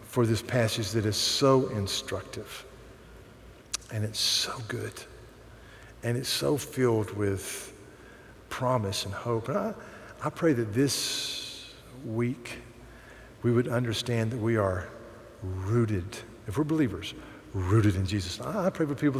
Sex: male